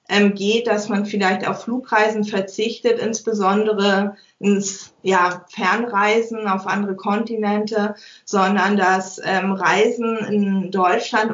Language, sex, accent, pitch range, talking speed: German, female, German, 195-220 Hz, 95 wpm